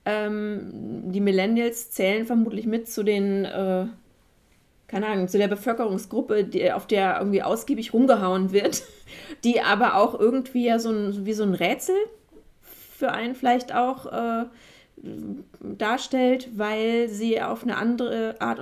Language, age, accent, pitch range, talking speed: German, 30-49, German, 190-235 Hz, 140 wpm